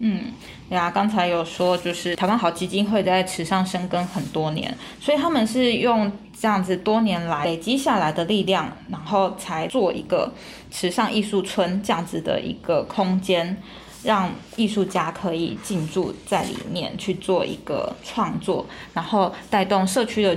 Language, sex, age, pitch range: Chinese, female, 20-39, 180-215 Hz